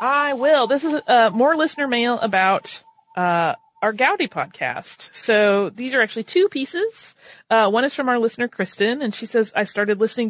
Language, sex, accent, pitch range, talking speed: English, female, American, 175-235 Hz, 185 wpm